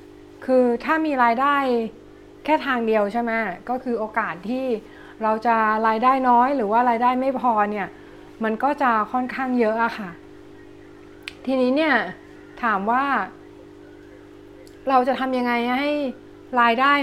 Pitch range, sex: 225-345 Hz, female